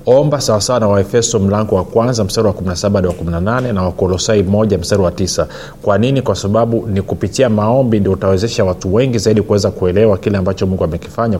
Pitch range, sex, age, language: 90-115 Hz, male, 30-49, Swahili